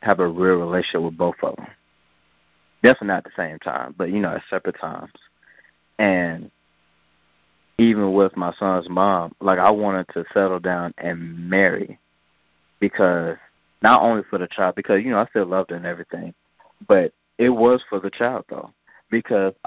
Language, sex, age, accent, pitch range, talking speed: English, male, 20-39, American, 80-105 Hz, 175 wpm